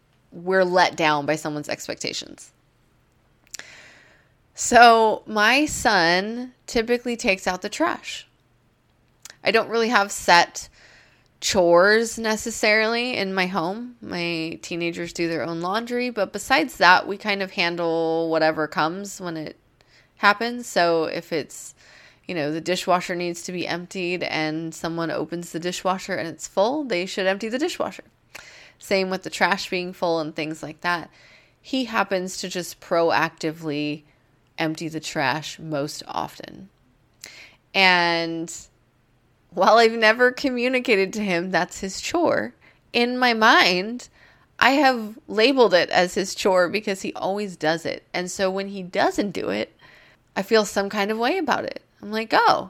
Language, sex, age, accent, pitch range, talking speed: English, female, 20-39, American, 165-225 Hz, 145 wpm